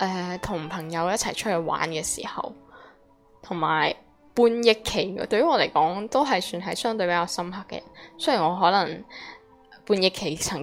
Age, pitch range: 10-29, 170-225 Hz